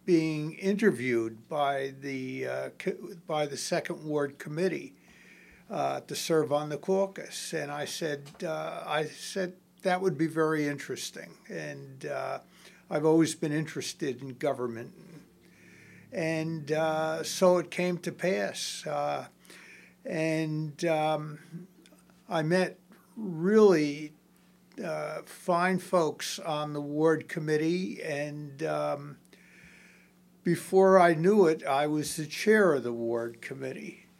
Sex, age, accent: male, 60-79, American